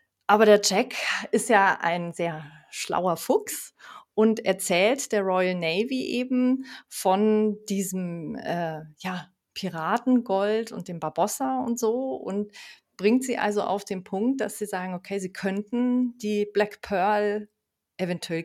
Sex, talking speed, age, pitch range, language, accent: female, 135 wpm, 40-59, 175-225 Hz, German, German